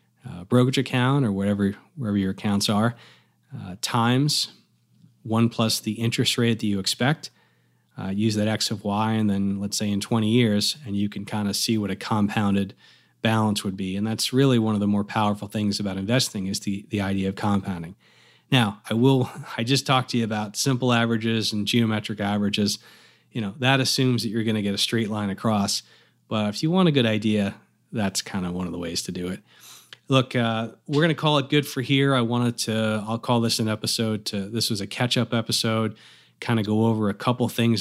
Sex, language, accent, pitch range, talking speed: male, English, American, 105-125 Hz, 215 wpm